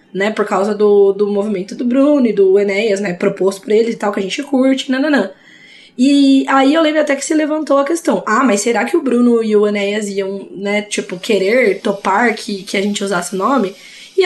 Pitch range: 210-285 Hz